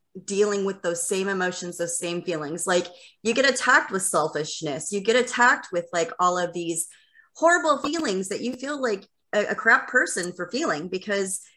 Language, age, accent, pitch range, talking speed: English, 30-49, American, 170-215 Hz, 180 wpm